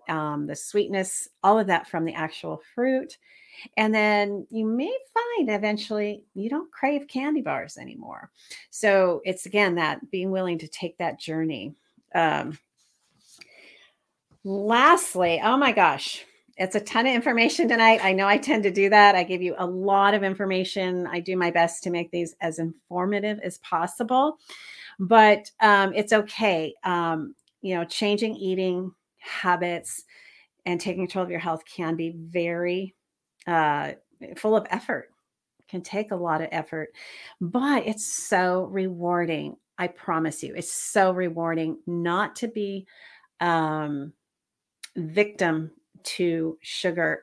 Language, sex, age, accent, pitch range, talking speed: English, female, 40-59, American, 170-215 Hz, 145 wpm